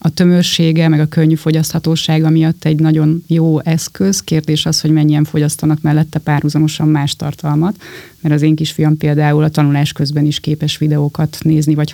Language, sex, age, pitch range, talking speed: Hungarian, female, 30-49, 150-165 Hz, 165 wpm